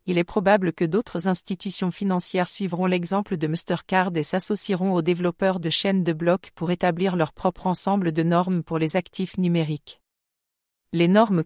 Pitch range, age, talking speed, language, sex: 170-195 Hz, 40-59, 170 wpm, English, female